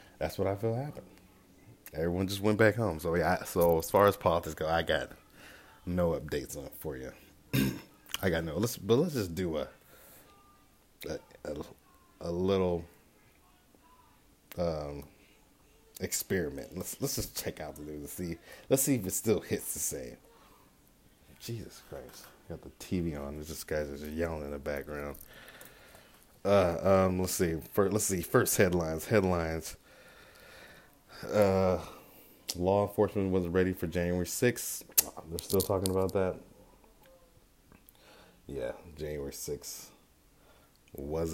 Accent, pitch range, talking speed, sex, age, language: American, 80-95 Hz, 145 wpm, male, 30-49, English